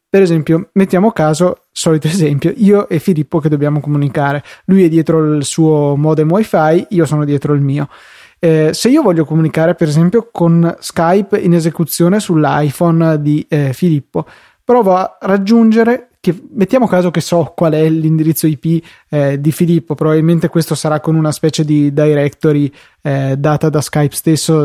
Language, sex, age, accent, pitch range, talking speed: Italian, male, 20-39, native, 155-185 Hz, 165 wpm